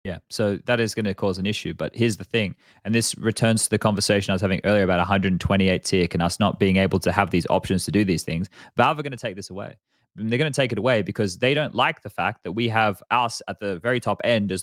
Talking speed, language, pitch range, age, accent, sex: 285 wpm, English, 100-150 Hz, 20-39, Australian, male